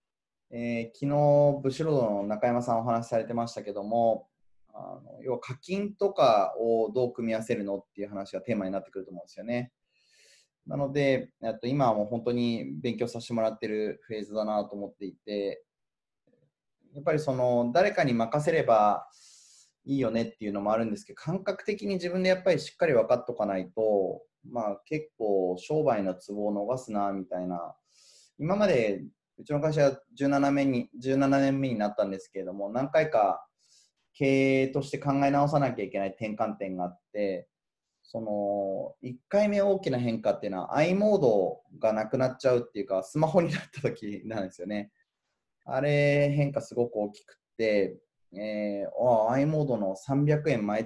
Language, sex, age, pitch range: Japanese, male, 20-39, 105-140 Hz